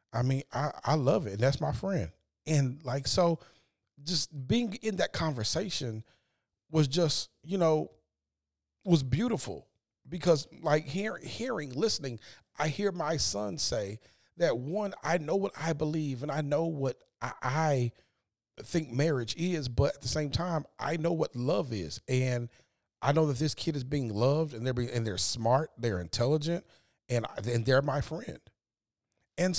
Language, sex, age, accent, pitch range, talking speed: English, male, 40-59, American, 125-170 Hz, 165 wpm